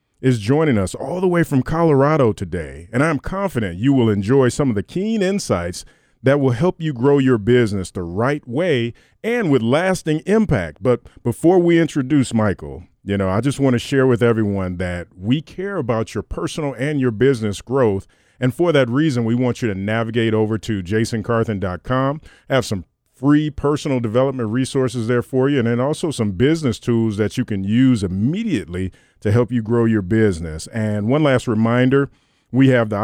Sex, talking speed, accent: male, 185 wpm, American